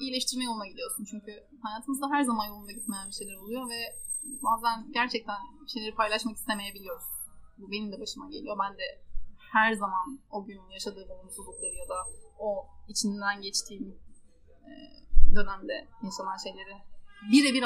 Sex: female